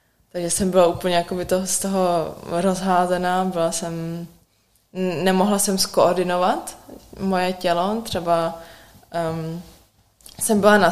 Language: Czech